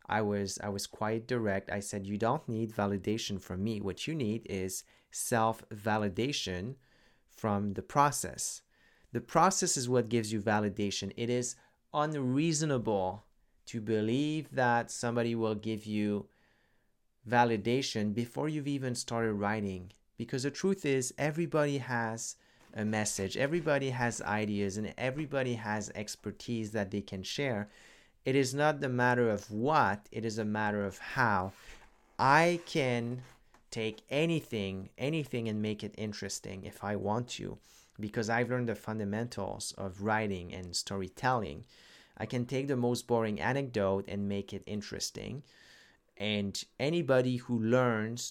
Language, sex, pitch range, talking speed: English, male, 105-125 Hz, 145 wpm